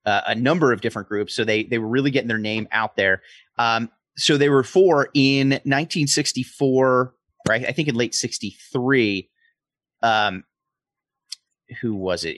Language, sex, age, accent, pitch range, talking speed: English, male, 30-49, American, 105-130 Hz, 160 wpm